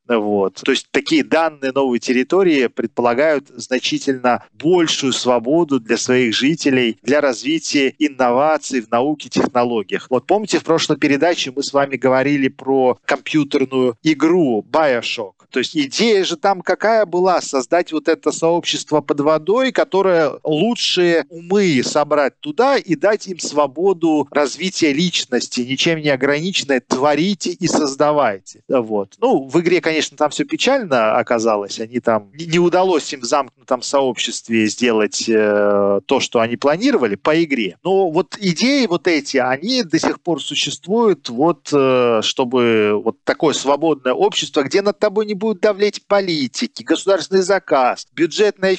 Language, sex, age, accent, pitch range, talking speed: Russian, male, 40-59, native, 130-185 Hz, 140 wpm